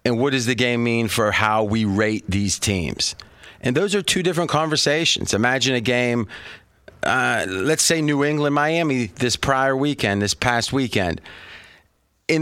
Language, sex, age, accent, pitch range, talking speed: English, male, 30-49, American, 115-145 Hz, 160 wpm